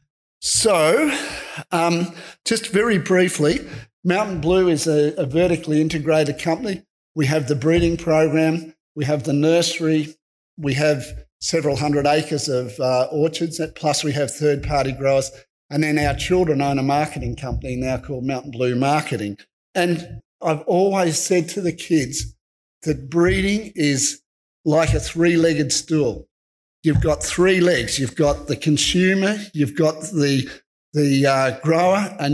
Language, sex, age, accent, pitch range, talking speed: English, male, 50-69, Australian, 145-175 Hz, 145 wpm